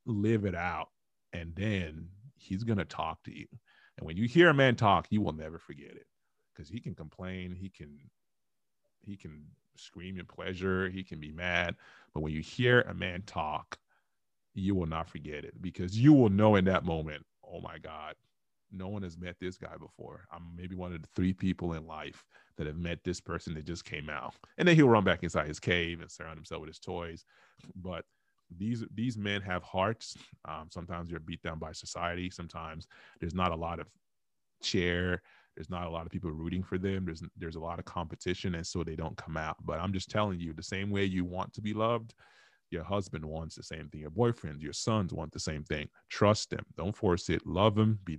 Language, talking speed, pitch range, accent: English, 220 wpm, 85-100 Hz, American